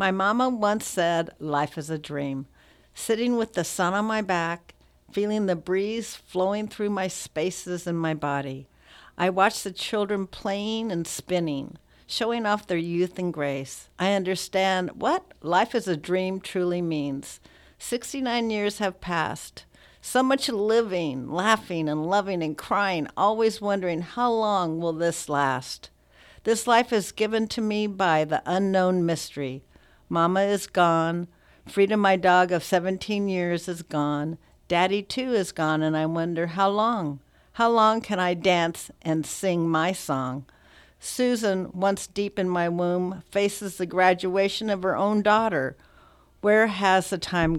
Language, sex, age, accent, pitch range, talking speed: English, female, 60-79, American, 165-205 Hz, 155 wpm